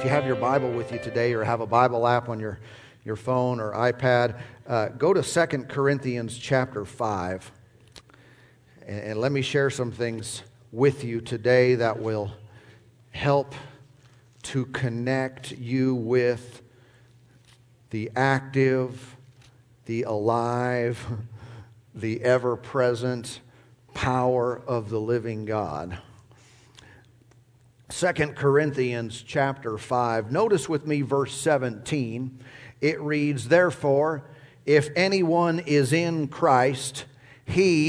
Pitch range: 120-150 Hz